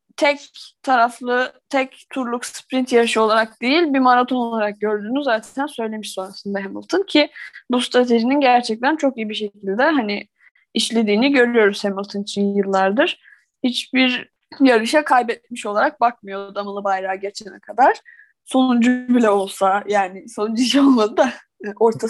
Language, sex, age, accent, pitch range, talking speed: Turkish, female, 10-29, native, 220-275 Hz, 130 wpm